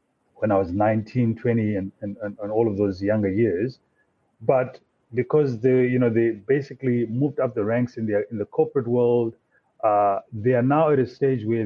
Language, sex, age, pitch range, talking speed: English, male, 30-49, 110-140 Hz, 195 wpm